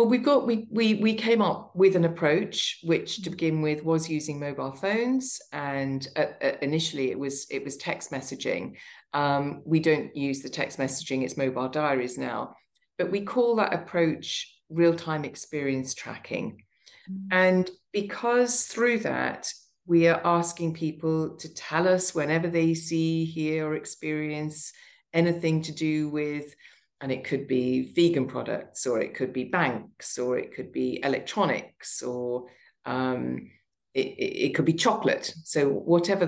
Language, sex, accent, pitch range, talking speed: English, female, British, 140-175 Hz, 155 wpm